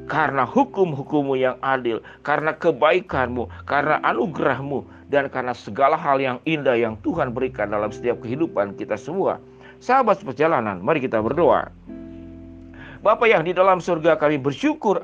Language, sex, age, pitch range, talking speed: Indonesian, male, 50-69, 120-170 Hz, 135 wpm